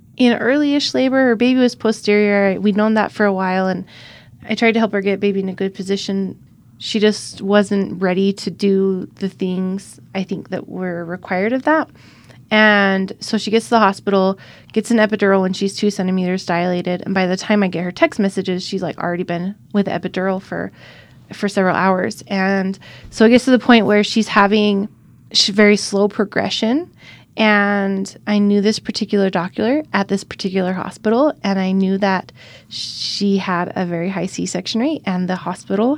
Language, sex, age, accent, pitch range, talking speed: English, female, 20-39, American, 185-215 Hz, 185 wpm